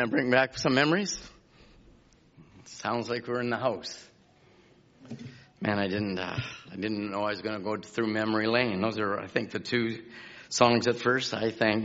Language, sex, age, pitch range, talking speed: English, male, 50-69, 105-125 Hz, 180 wpm